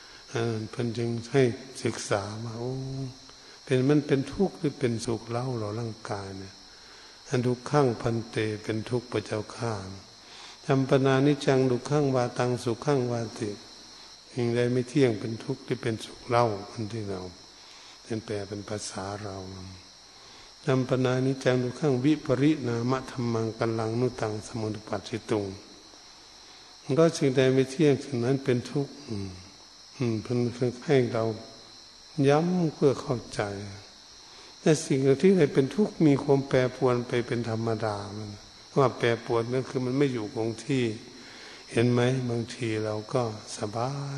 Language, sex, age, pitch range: Thai, male, 60-79, 110-130 Hz